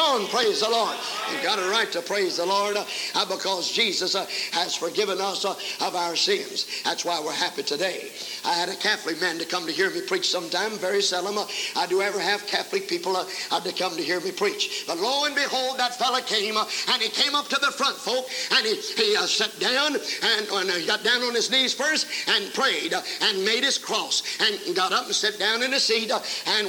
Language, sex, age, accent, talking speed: English, male, 50-69, American, 240 wpm